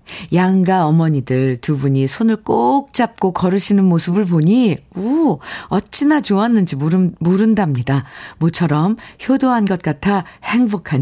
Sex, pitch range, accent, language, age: female, 150-220 Hz, native, Korean, 50-69